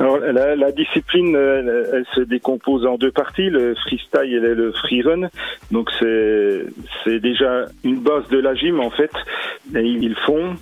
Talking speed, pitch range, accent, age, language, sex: 170 wpm, 115-160 Hz, French, 40-59, French, male